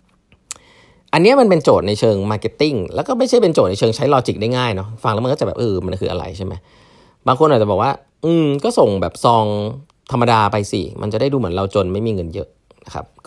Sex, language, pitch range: male, Thai, 95-130 Hz